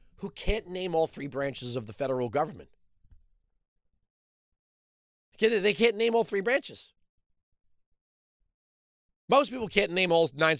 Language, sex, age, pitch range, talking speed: English, male, 40-59, 135-225 Hz, 125 wpm